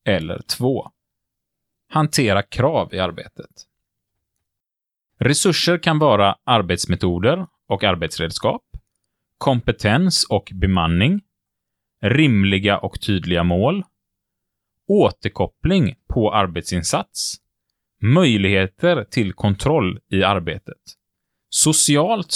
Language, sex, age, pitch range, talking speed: Swedish, male, 30-49, 100-140 Hz, 75 wpm